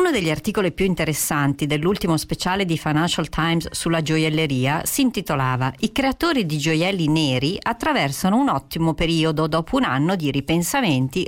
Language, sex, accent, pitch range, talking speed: Italian, female, native, 145-195 Hz, 150 wpm